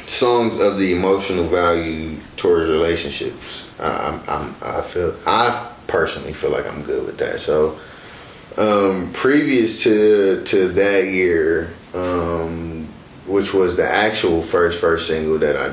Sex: male